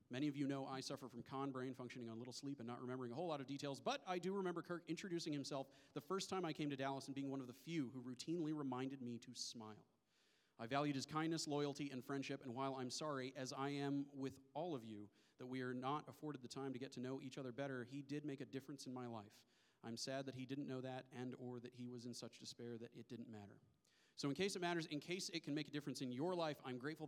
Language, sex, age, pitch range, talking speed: English, male, 40-59, 125-150 Hz, 275 wpm